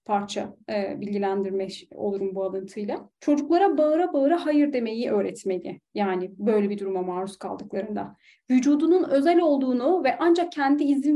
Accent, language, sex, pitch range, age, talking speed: native, Turkish, female, 210-285 Hz, 30-49, 135 wpm